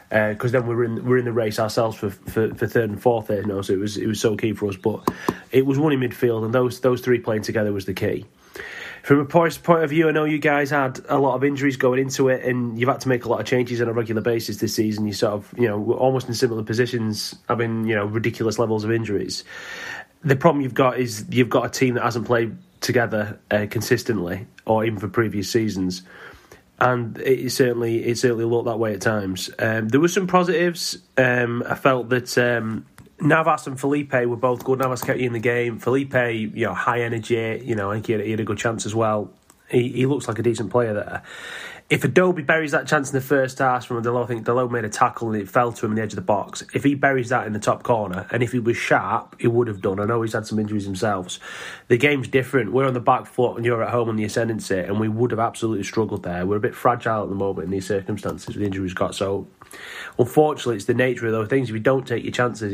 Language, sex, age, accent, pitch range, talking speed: English, male, 30-49, British, 110-130 Hz, 260 wpm